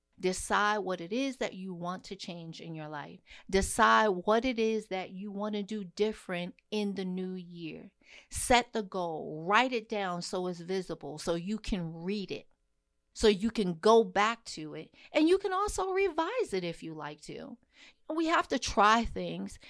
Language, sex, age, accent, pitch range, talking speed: English, female, 40-59, American, 185-265 Hz, 185 wpm